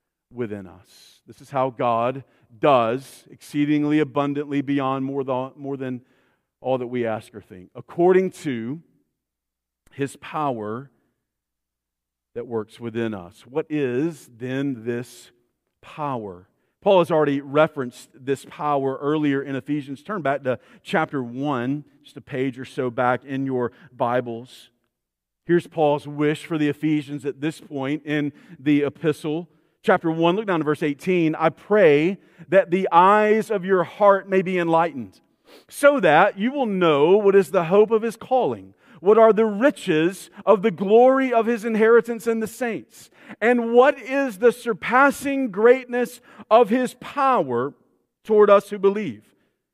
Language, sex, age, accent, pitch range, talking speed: English, male, 40-59, American, 130-205 Hz, 145 wpm